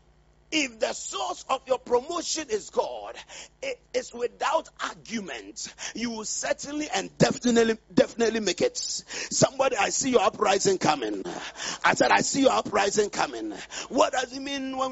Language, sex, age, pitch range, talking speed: English, male, 40-59, 195-280 Hz, 155 wpm